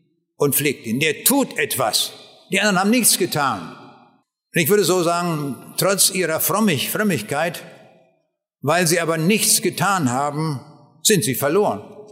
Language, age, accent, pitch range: German, 60-79, German, 155-205 Hz